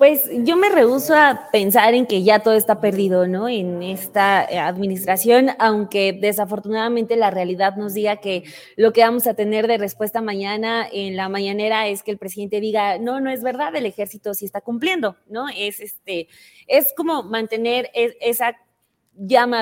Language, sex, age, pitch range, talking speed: Spanish, female, 20-39, 200-250 Hz, 170 wpm